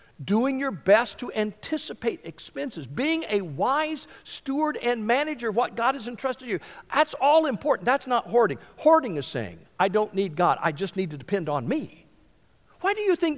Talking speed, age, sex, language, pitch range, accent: 190 wpm, 50-69, male, English, 175-280 Hz, American